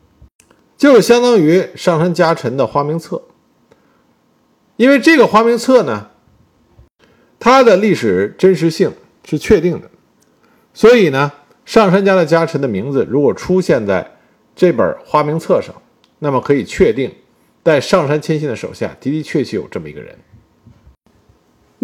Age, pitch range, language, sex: 50-69, 145-215 Hz, Chinese, male